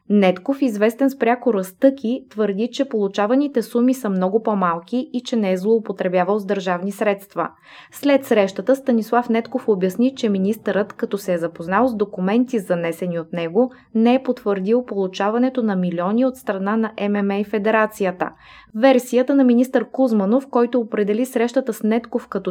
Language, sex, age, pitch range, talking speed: Bulgarian, female, 20-39, 195-245 Hz, 155 wpm